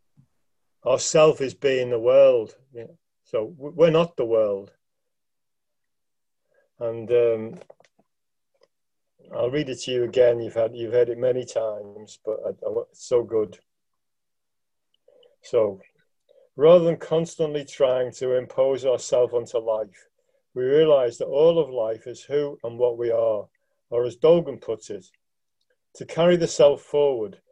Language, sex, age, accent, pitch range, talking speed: English, male, 50-69, British, 115-170 Hz, 135 wpm